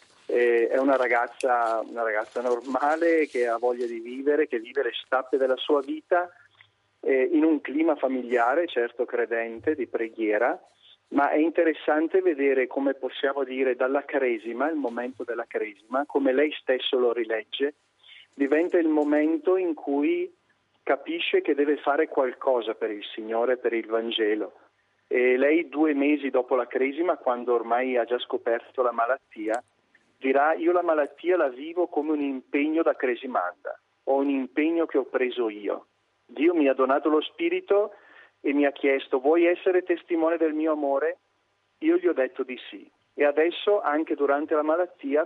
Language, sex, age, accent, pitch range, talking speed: Italian, male, 40-59, native, 125-170 Hz, 160 wpm